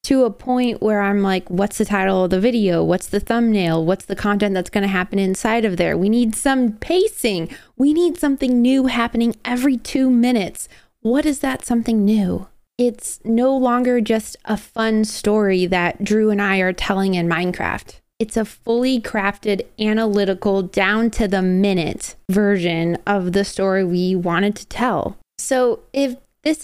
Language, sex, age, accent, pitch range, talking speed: English, female, 20-39, American, 195-250 Hz, 170 wpm